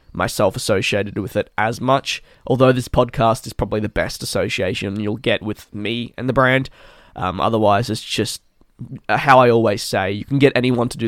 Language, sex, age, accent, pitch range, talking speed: English, male, 10-29, Australian, 110-130 Hz, 190 wpm